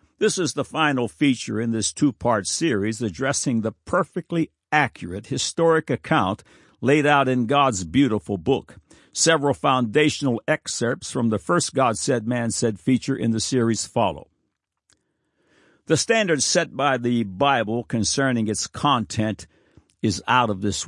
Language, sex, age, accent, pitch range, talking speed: English, male, 60-79, American, 110-145 Hz, 140 wpm